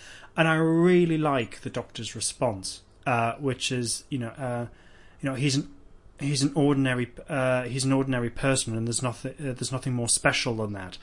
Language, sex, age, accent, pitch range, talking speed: English, male, 30-49, British, 105-140 Hz, 190 wpm